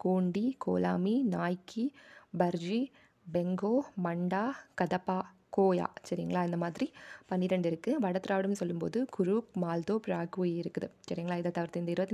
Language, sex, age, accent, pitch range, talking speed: Tamil, female, 20-39, native, 175-220 Hz, 125 wpm